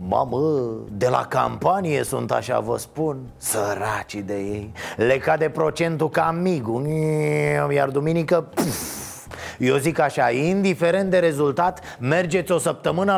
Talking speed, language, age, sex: 130 wpm, Romanian, 30-49, male